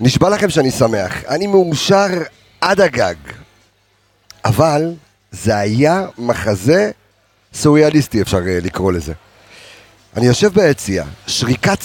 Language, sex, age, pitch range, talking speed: Hebrew, male, 40-59, 105-155 Hz, 100 wpm